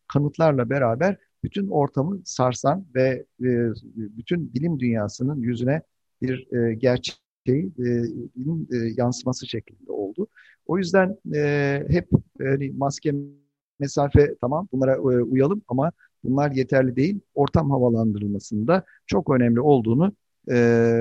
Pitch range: 120-150 Hz